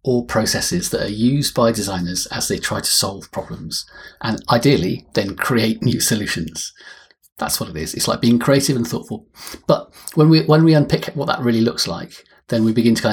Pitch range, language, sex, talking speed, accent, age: 110-130 Hz, English, male, 205 wpm, British, 40-59